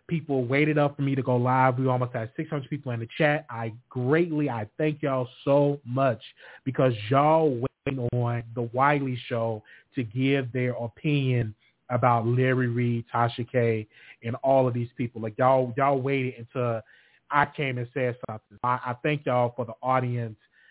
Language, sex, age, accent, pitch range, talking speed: English, male, 30-49, American, 120-145 Hz, 180 wpm